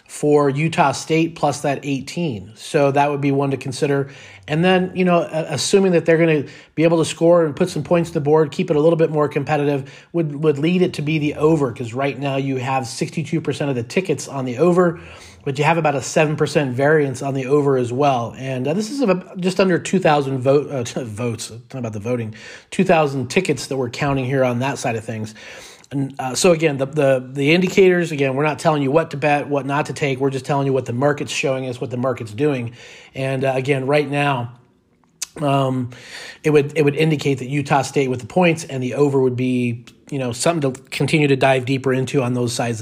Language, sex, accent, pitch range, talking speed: English, male, American, 135-160 Hz, 235 wpm